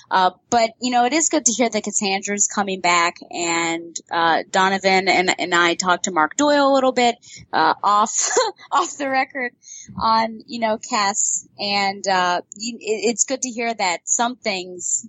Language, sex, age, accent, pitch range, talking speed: English, female, 20-39, American, 175-235 Hz, 185 wpm